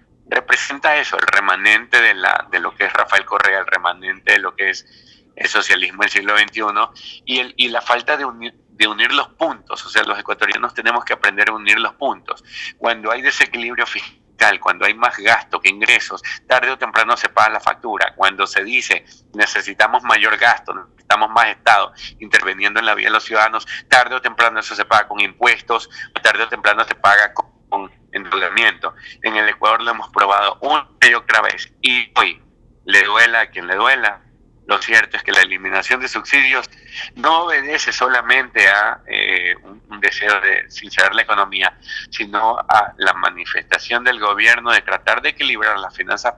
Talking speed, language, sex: 180 wpm, Spanish, male